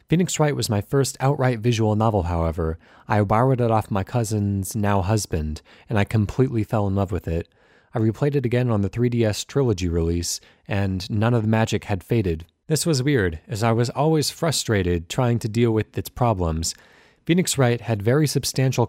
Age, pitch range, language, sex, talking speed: 30-49, 100-130 Hz, English, male, 185 wpm